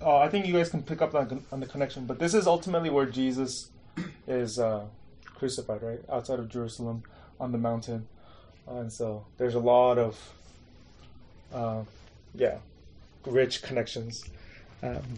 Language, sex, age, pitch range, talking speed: English, male, 20-39, 120-155 Hz, 145 wpm